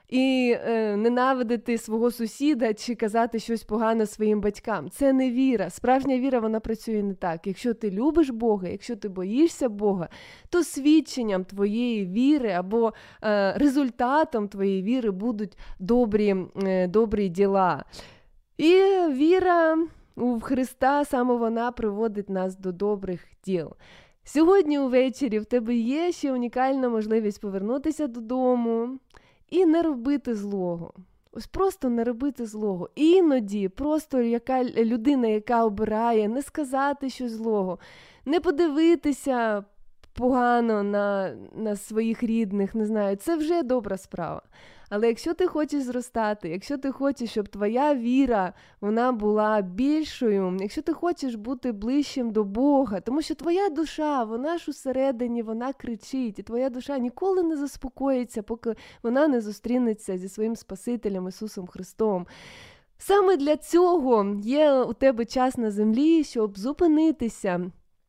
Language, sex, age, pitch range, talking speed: Ukrainian, female, 20-39, 210-275 Hz, 135 wpm